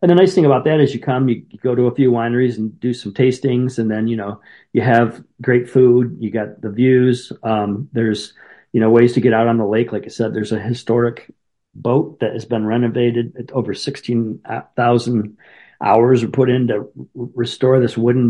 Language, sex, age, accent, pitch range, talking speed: English, male, 40-59, American, 110-125 Hz, 215 wpm